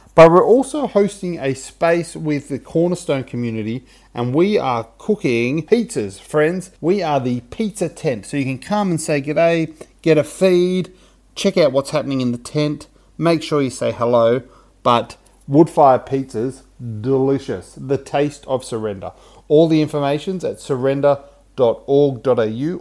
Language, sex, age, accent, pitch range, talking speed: English, male, 30-49, Australian, 125-160 Hz, 150 wpm